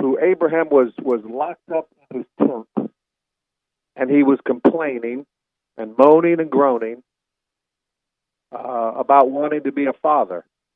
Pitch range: 135-175 Hz